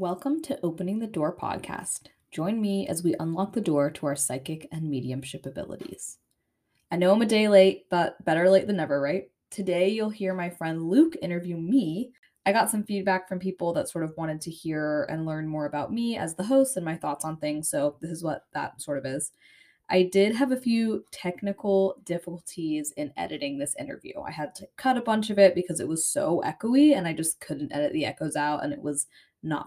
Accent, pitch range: American, 160-210 Hz